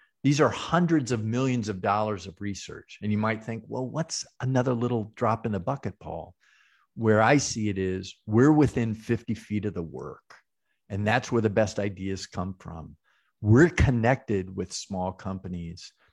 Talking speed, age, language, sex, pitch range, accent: 175 wpm, 50-69, English, male, 100-120 Hz, American